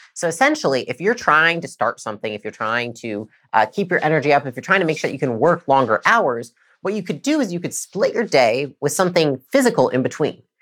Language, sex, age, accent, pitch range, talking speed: English, female, 30-49, American, 125-210 Hz, 250 wpm